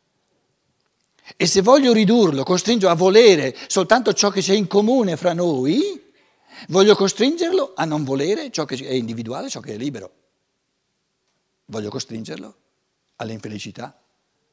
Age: 60-79